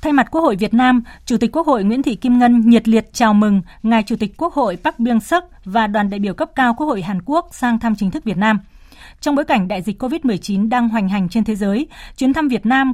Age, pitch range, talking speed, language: 20-39, 205-260 Hz, 270 wpm, Vietnamese